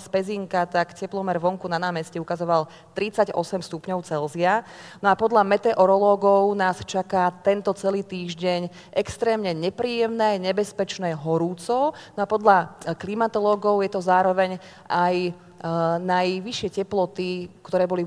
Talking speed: 115 wpm